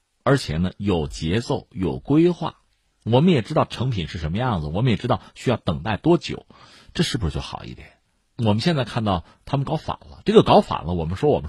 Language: Chinese